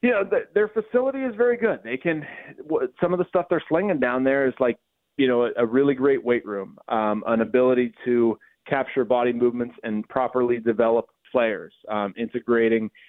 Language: English